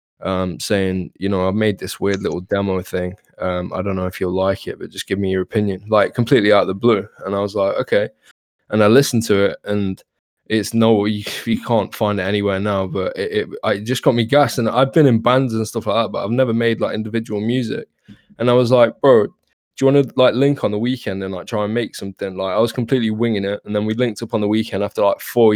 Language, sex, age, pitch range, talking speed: English, male, 20-39, 100-110 Hz, 260 wpm